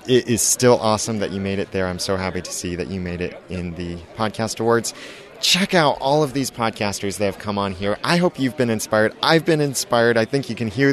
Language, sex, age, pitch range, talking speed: English, male, 30-49, 100-130 Hz, 255 wpm